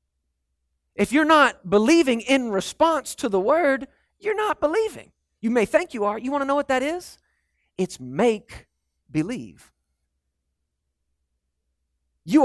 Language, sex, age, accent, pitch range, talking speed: English, male, 40-59, American, 170-255 Hz, 135 wpm